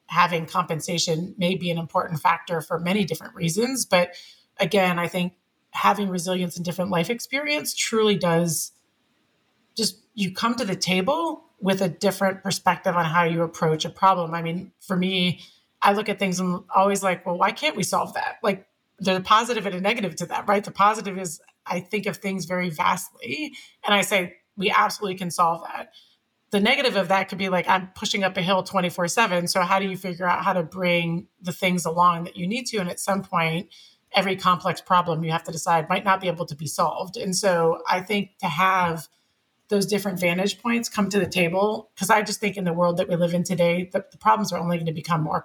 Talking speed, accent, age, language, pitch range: 220 wpm, American, 30-49, English, 175-200 Hz